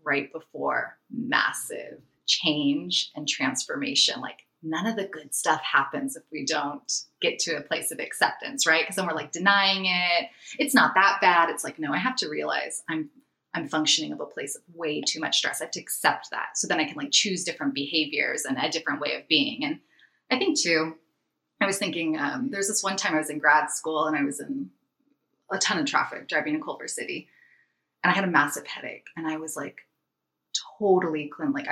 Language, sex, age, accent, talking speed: English, female, 20-39, American, 210 wpm